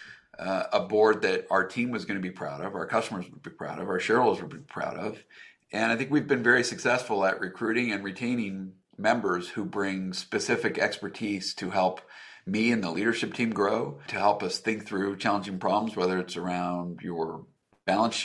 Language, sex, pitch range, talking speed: English, male, 95-120 Hz, 190 wpm